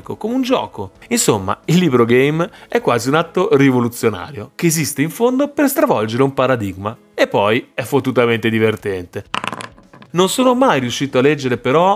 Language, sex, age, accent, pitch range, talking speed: Italian, male, 30-49, native, 115-185 Hz, 160 wpm